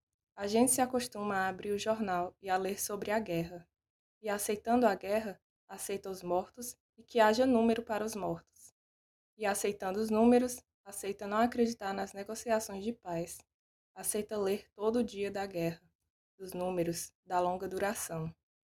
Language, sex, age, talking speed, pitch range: Portuguese, female, 20-39, 165 wpm, 185-220 Hz